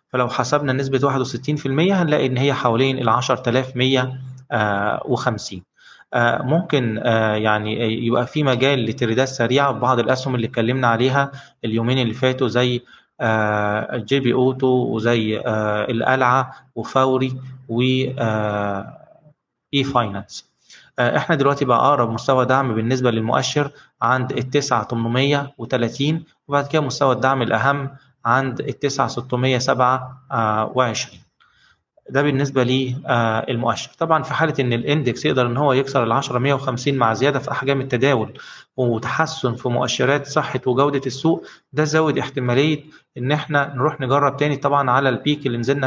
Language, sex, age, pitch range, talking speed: Arabic, male, 20-39, 120-140 Hz, 130 wpm